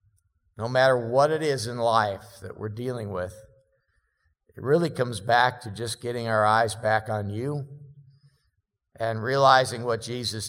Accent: American